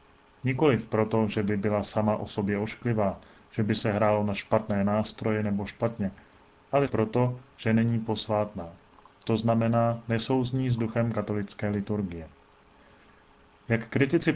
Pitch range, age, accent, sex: 110-125 Hz, 30-49, native, male